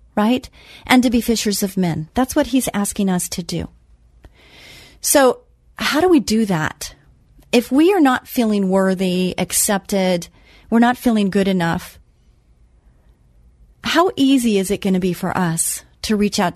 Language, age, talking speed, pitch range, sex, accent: English, 40-59, 160 wpm, 165-235 Hz, female, American